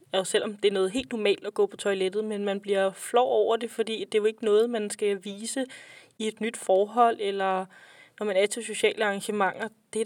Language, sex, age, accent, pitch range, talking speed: Danish, female, 20-39, native, 185-220 Hz, 235 wpm